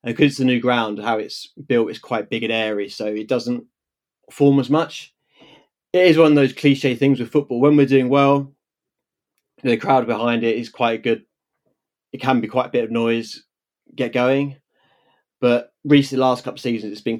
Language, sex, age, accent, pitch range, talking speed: English, male, 30-49, British, 115-140 Hz, 200 wpm